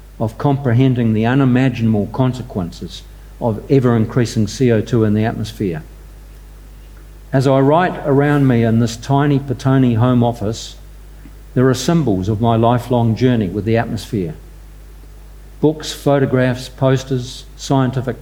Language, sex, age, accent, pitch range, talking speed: English, male, 50-69, Australian, 115-135 Hz, 120 wpm